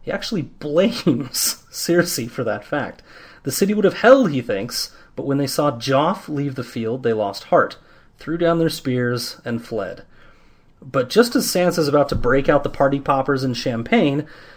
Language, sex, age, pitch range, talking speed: English, male, 30-49, 115-155 Hz, 180 wpm